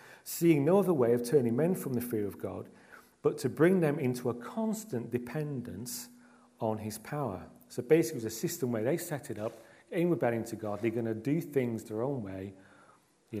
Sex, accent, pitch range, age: male, British, 110-140 Hz, 40-59